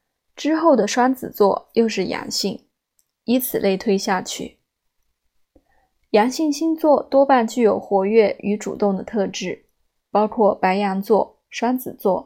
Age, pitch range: 20-39, 200-260 Hz